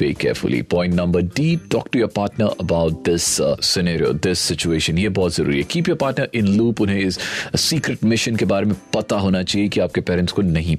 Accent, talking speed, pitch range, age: native, 195 wpm, 90-120 Hz, 40-59